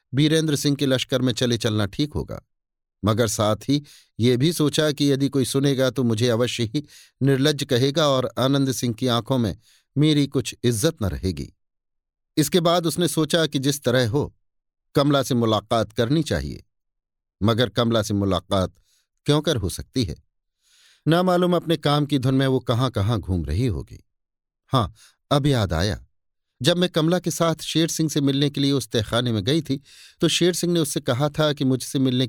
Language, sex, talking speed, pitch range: Hindi, male, 190 wpm, 115-145 Hz